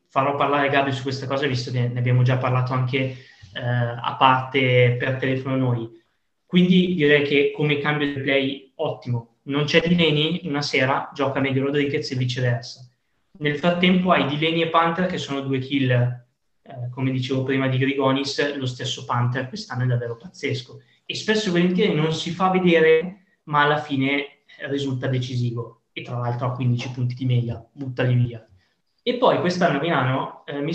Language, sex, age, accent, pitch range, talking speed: Italian, male, 20-39, native, 125-160 Hz, 175 wpm